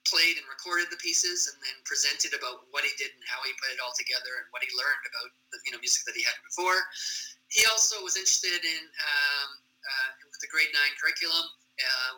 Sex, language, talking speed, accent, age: male, English, 220 wpm, American, 30-49